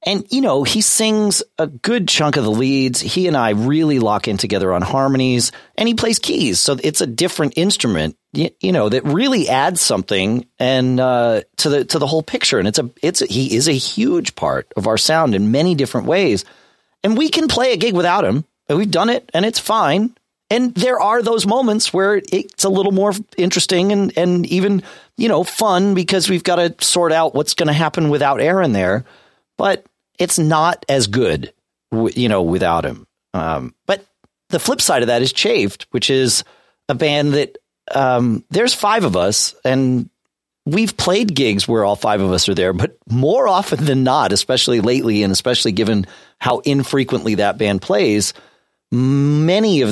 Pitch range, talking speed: 115-190 Hz, 195 wpm